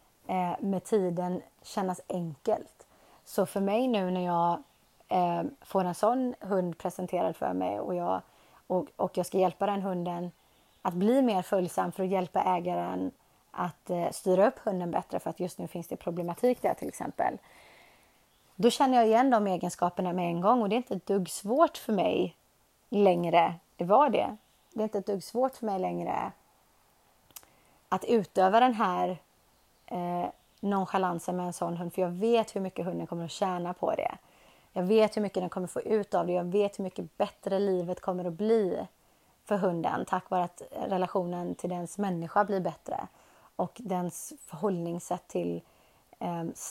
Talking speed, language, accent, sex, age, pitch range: 175 wpm, Swedish, native, female, 30-49, 175-205 Hz